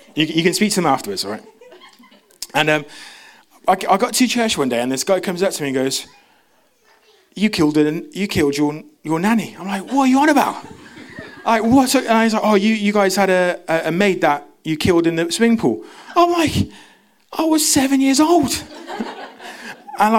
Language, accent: English, British